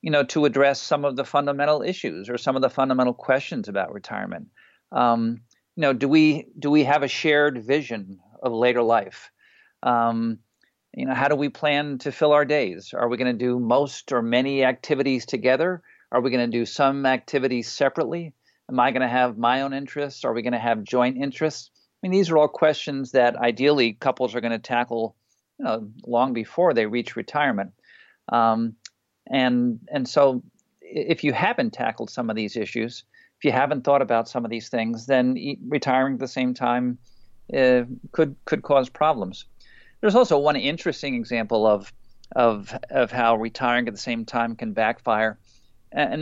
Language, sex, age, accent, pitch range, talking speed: English, male, 50-69, American, 120-145 Hz, 185 wpm